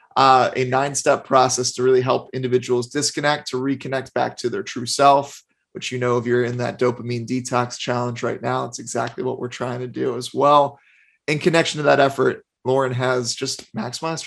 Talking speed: 195 wpm